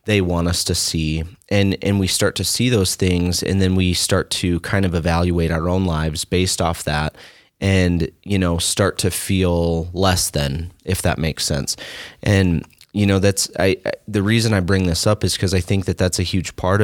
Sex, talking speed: male, 215 wpm